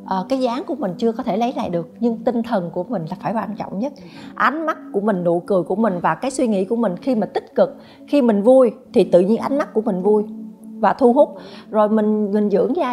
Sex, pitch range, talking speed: female, 205-265 Hz, 270 wpm